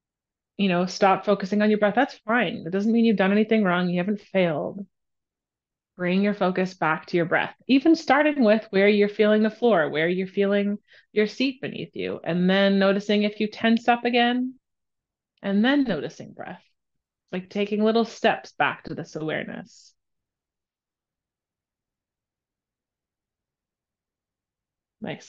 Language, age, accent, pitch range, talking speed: English, 30-49, American, 175-210 Hz, 145 wpm